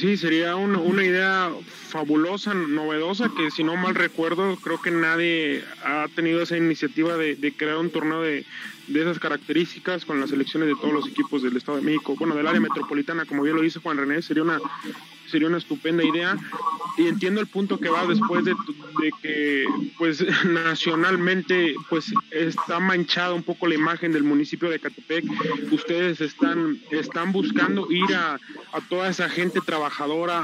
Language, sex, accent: Spanish, male, Mexican